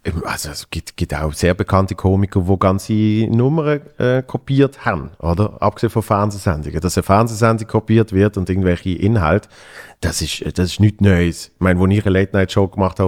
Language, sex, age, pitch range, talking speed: German, male, 40-59, 90-110 Hz, 180 wpm